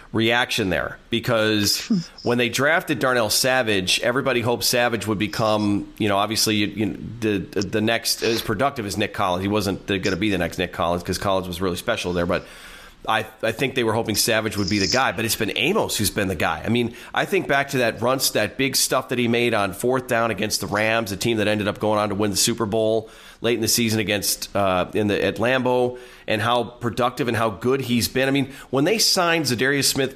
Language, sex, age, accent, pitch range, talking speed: English, male, 40-59, American, 105-125 Hz, 235 wpm